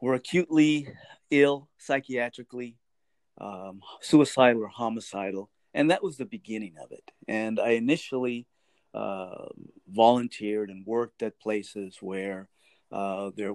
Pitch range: 105-145 Hz